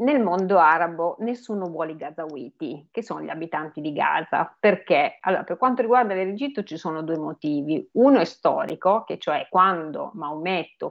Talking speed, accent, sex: 165 wpm, native, female